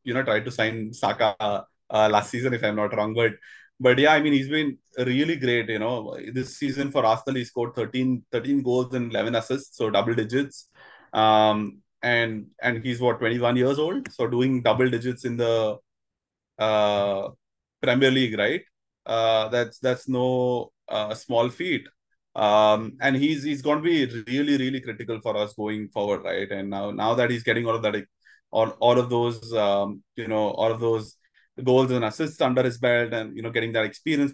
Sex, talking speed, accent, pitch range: male, 195 wpm, Indian, 110-130 Hz